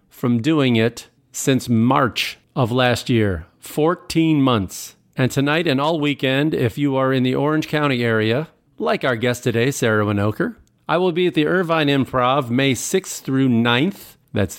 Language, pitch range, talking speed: English, 110-140 Hz, 170 wpm